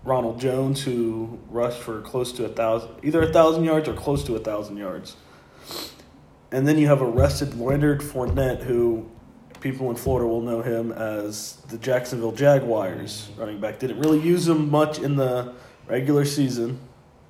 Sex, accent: male, American